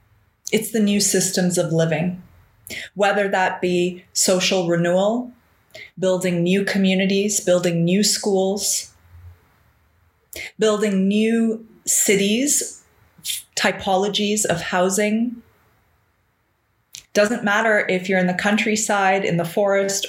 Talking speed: 100 wpm